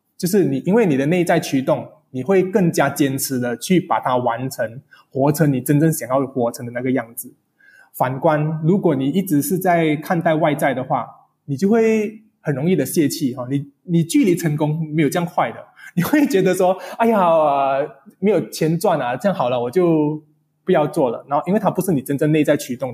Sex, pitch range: male, 135-185 Hz